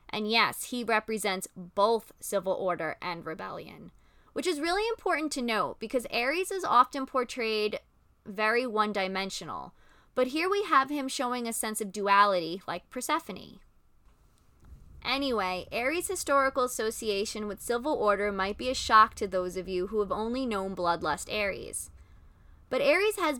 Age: 20-39